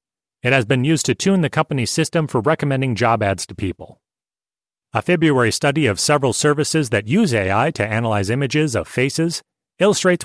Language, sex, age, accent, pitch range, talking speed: English, male, 40-59, American, 115-155 Hz, 175 wpm